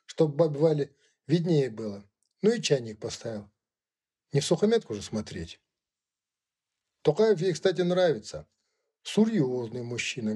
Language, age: Russian, 50-69